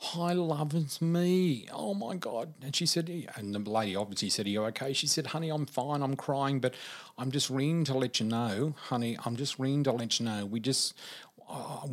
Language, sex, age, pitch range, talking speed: English, male, 40-59, 120-165 Hz, 220 wpm